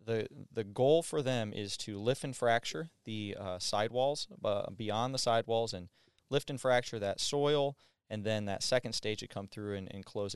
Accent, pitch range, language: American, 100-125 Hz, English